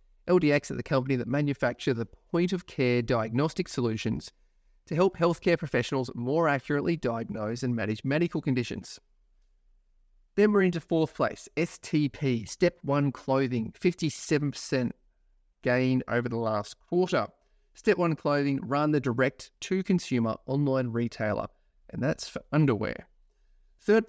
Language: English